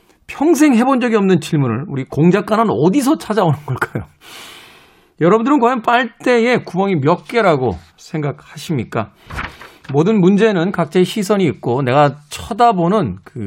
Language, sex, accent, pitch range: Korean, male, native, 140-220 Hz